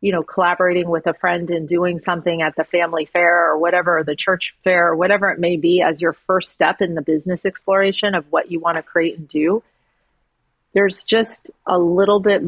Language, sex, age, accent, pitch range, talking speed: English, female, 40-59, American, 170-195 Hz, 205 wpm